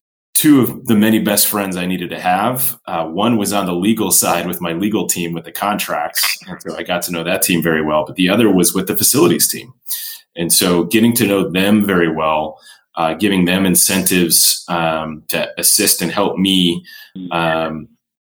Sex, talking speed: male, 200 wpm